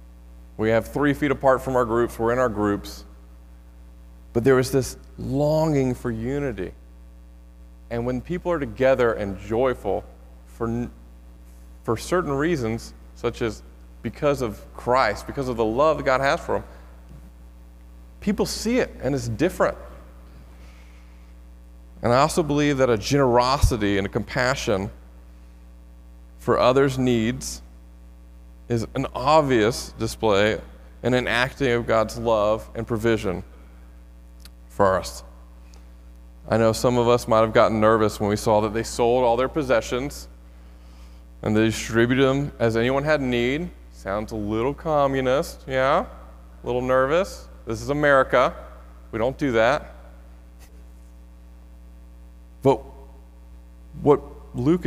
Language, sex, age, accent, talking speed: English, male, 40-59, American, 130 wpm